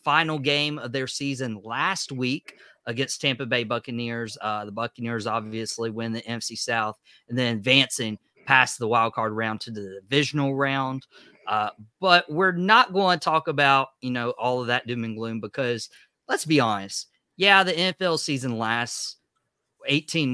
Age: 30-49